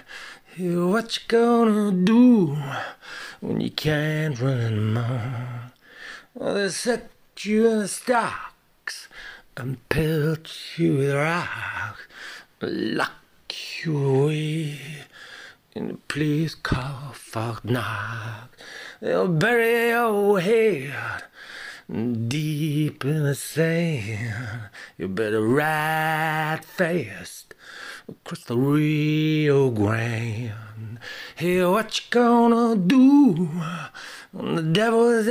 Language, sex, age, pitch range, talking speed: English, male, 50-69, 130-205 Hz, 95 wpm